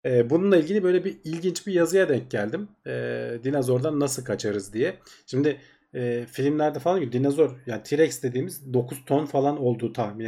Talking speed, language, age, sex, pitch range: 165 wpm, Turkish, 40-59, male, 120-150 Hz